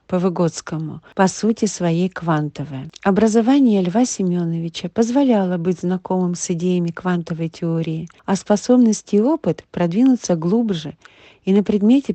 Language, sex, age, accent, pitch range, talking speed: Russian, female, 50-69, native, 170-220 Hz, 125 wpm